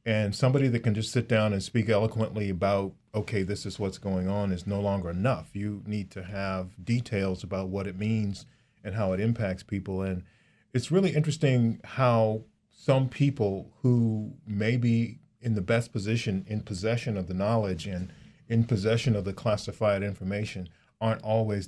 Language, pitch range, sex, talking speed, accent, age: English, 100-120 Hz, male, 175 wpm, American, 40-59